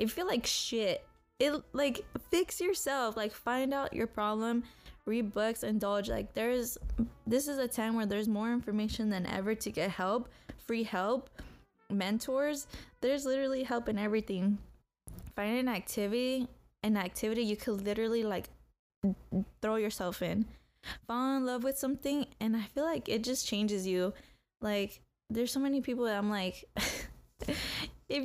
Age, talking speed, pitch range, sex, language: 10-29, 155 wpm, 205-245 Hz, female, English